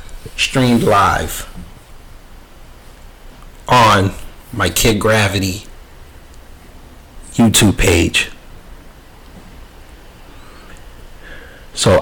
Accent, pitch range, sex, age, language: American, 90-130 Hz, male, 30-49, English